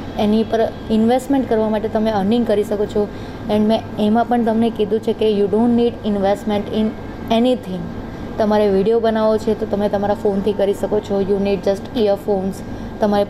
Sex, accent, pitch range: female, native, 205-230 Hz